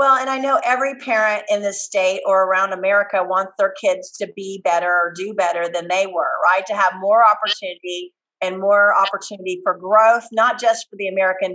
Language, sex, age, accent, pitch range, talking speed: English, female, 40-59, American, 190-235 Hz, 205 wpm